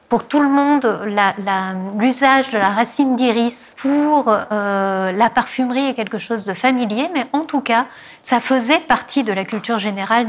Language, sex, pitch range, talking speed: French, female, 195-255 Hz, 180 wpm